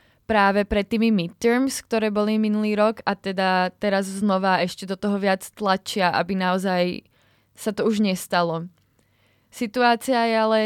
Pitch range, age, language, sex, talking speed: 185-210 Hz, 20-39, Slovak, female, 145 wpm